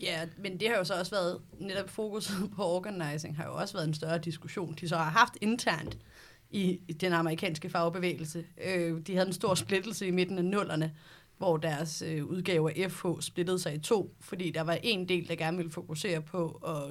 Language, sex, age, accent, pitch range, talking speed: Danish, female, 30-49, native, 165-200 Hz, 200 wpm